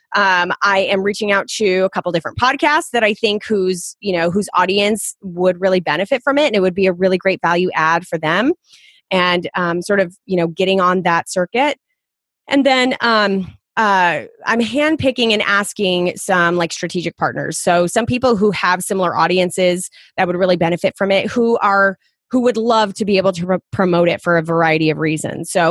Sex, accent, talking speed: female, American, 205 wpm